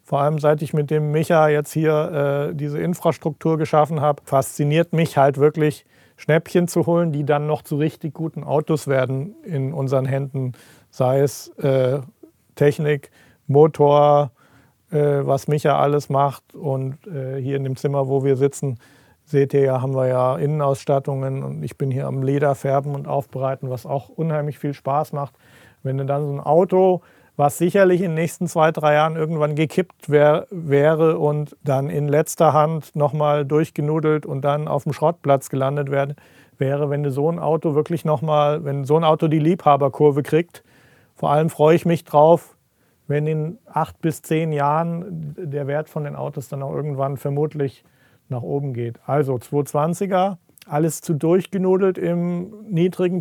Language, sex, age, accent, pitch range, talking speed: German, male, 40-59, German, 140-160 Hz, 165 wpm